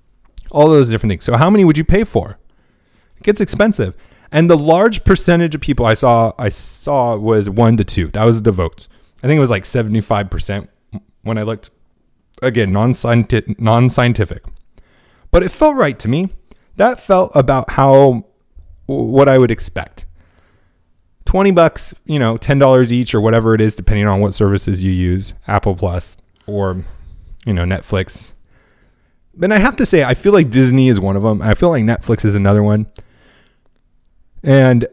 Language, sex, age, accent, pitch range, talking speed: English, male, 30-49, American, 100-135 Hz, 175 wpm